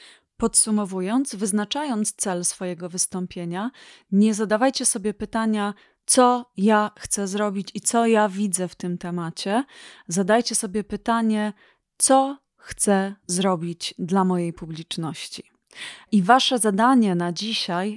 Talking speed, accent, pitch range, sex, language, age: 115 wpm, native, 185-230 Hz, female, Polish, 30-49